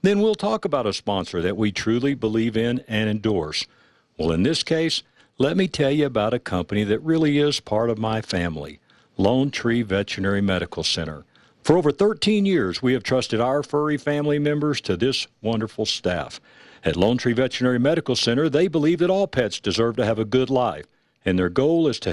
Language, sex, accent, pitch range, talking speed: English, male, American, 110-150 Hz, 200 wpm